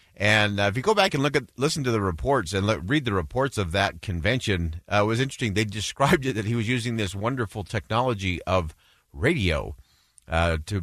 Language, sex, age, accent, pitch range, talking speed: English, male, 40-59, American, 85-110 Hz, 215 wpm